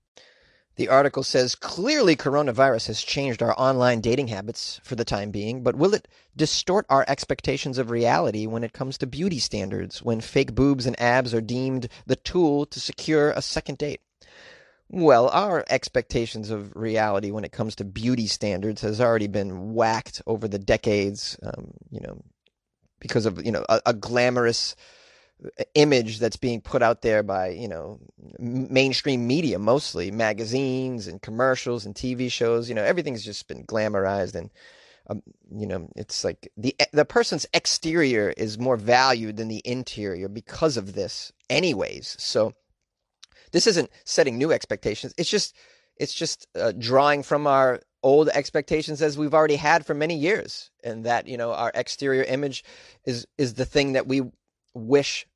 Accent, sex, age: American, male, 30-49